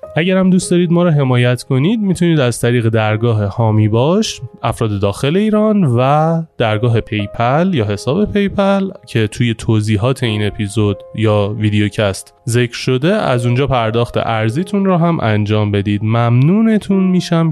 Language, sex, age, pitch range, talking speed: Persian, male, 20-39, 105-170 Hz, 145 wpm